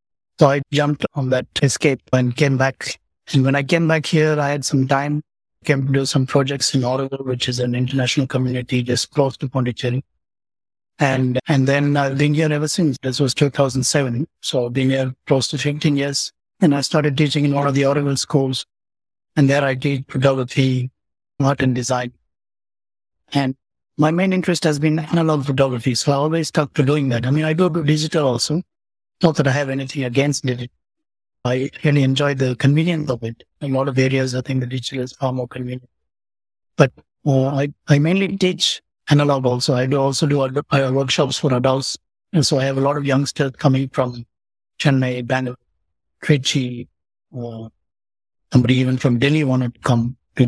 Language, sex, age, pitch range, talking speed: English, male, 60-79, 125-145 Hz, 190 wpm